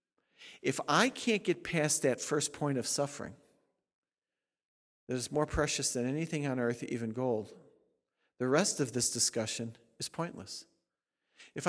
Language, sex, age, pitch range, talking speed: English, male, 50-69, 135-170 Hz, 145 wpm